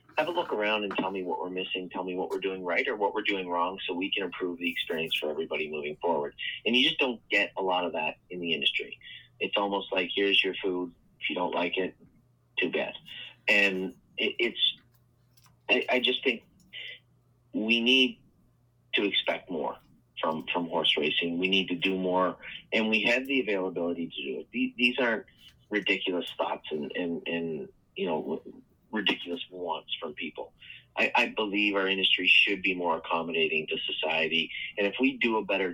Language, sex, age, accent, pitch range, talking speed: English, male, 30-49, American, 85-100 Hz, 195 wpm